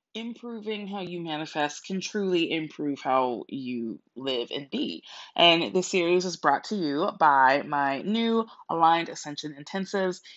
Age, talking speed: 20-39, 145 wpm